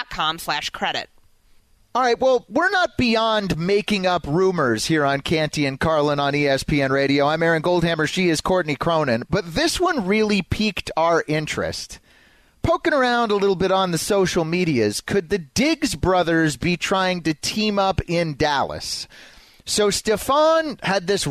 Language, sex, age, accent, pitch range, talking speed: English, male, 30-49, American, 145-205 Hz, 155 wpm